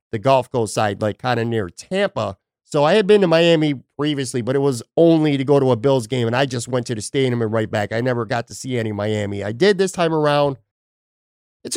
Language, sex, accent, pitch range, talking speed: English, male, American, 115-145 Hz, 250 wpm